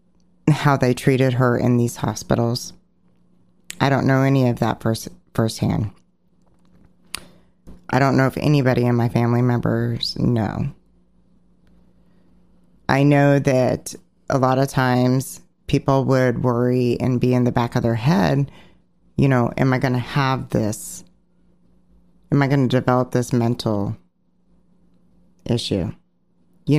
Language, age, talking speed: English, 30-49, 135 wpm